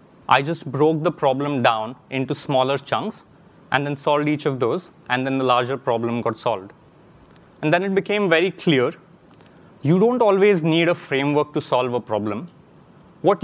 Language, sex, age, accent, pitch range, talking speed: English, male, 30-49, Indian, 130-170 Hz, 175 wpm